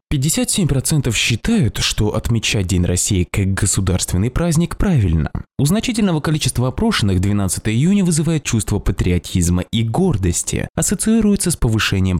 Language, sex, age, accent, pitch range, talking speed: Russian, male, 20-39, native, 95-145 Hz, 115 wpm